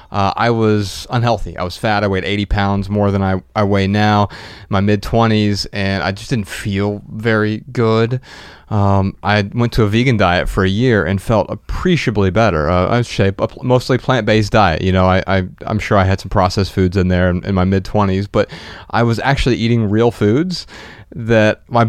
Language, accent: English, American